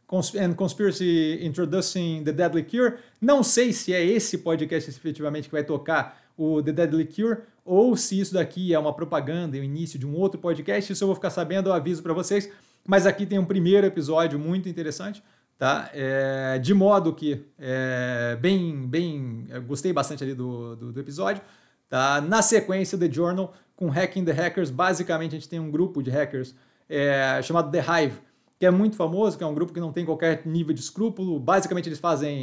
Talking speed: 195 wpm